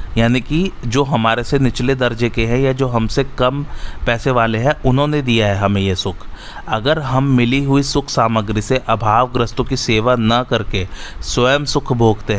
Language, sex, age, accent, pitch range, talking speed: Hindi, male, 30-49, native, 110-130 Hz, 180 wpm